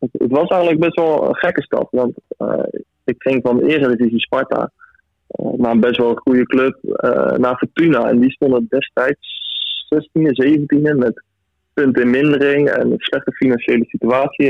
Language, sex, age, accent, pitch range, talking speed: Dutch, male, 20-39, Dutch, 120-145 Hz, 175 wpm